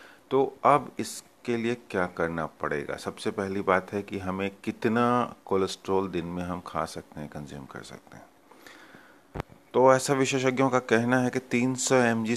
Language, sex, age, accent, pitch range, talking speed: Hindi, male, 30-49, native, 95-110 Hz, 165 wpm